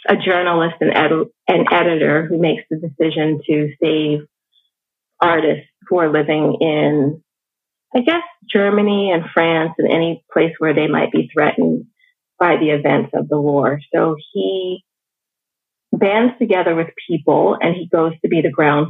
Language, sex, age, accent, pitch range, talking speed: English, female, 30-49, American, 150-180 Hz, 150 wpm